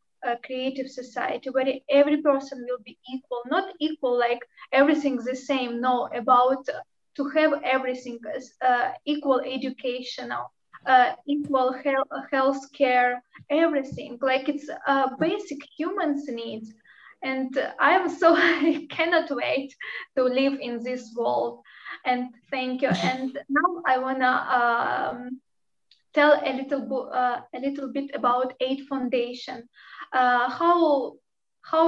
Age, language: 20-39, English